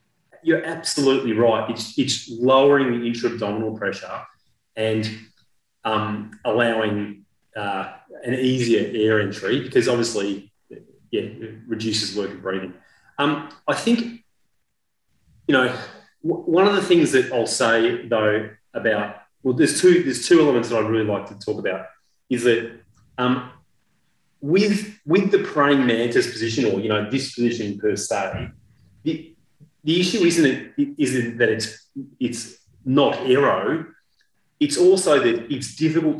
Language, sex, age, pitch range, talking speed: English, male, 30-49, 110-145 Hz, 140 wpm